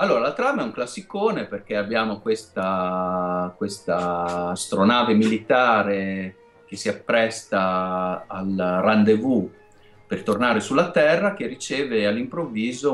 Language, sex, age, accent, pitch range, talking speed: Italian, male, 30-49, native, 90-105 Hz, 110 wpm